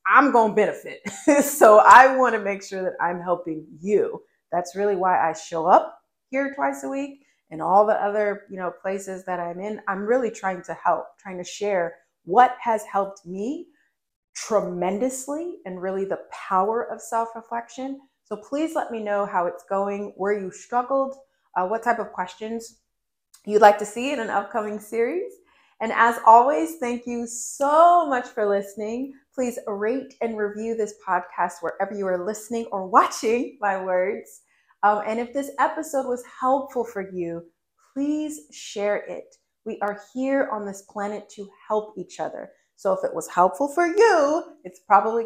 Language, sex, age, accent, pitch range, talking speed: English, female, 30-49, American, 190-260 Hz, 175 wpm